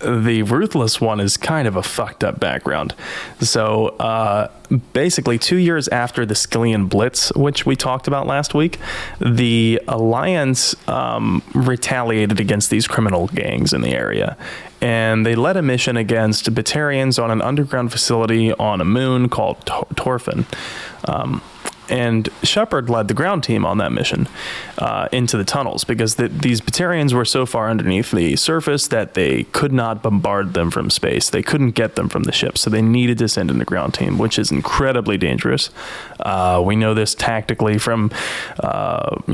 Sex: male